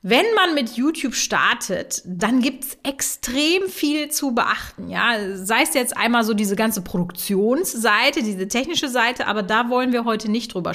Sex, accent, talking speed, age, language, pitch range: female, German, 175 wpm, 30-49, German, 205-270 Hz